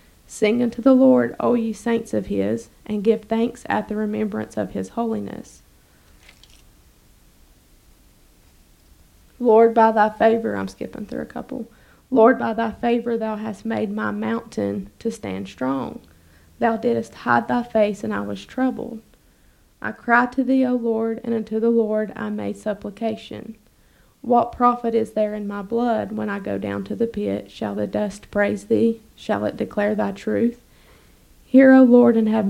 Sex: female